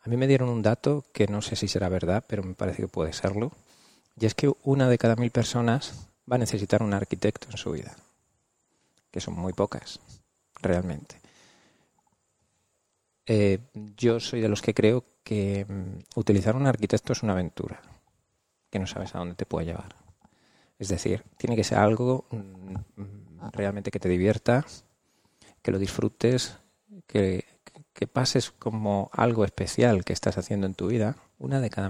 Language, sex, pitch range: Spanish, male, 95-115 Hz